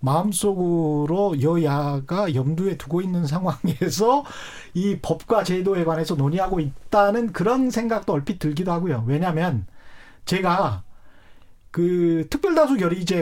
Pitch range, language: 140-200 Hz, Korean